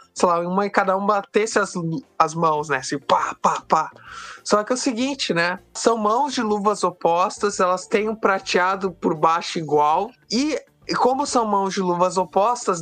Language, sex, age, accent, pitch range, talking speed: Portuguese, male, 20-39, Brazilian, 190-240 Hz, 185 wpm